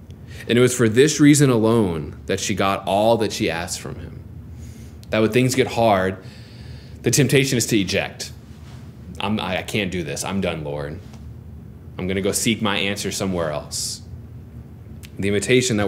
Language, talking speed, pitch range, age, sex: English, 170 wpm, 100-120 Hz, 20-39, male